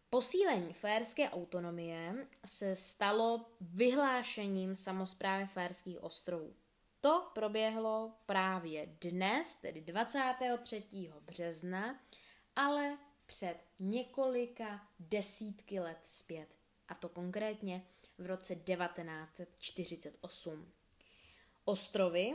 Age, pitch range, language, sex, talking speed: 20-39, 180-225 Hz, Czech, female, 80 wpm